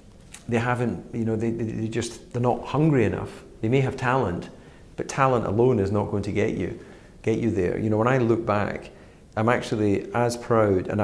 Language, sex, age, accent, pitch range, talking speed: English, male, 40-59, British, 100-120 Hz, 210 wpm